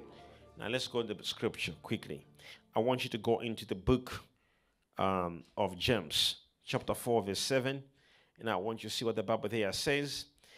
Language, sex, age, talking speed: English, male, 50-69, 185 wpm